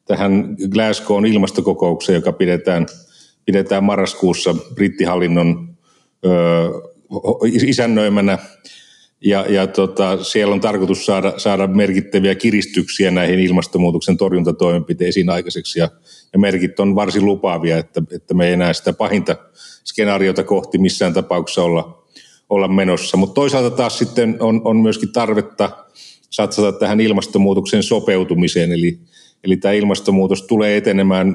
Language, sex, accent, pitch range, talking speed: Finnish, male, native, 90-100 Hz, 120 wpm